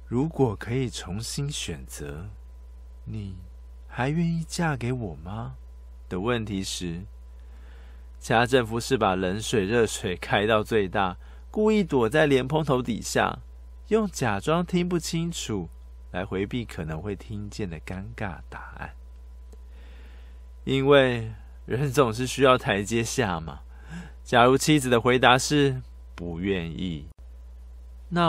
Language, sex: Chinese, male